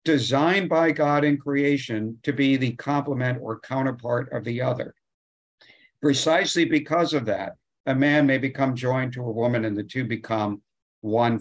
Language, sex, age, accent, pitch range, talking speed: English, male, 50-69, American, 120-150 Hz, 165 wpm